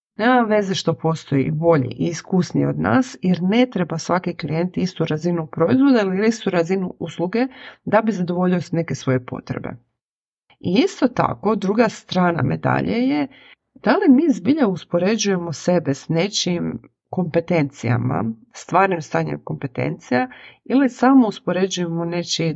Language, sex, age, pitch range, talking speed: Croatian, female, 40-59, 150-195 Hz, 135 wpm